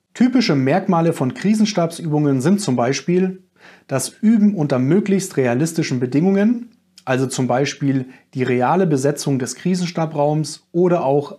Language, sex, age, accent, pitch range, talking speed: German, male, 30-49, German, 135-185 Hz, 120 wpm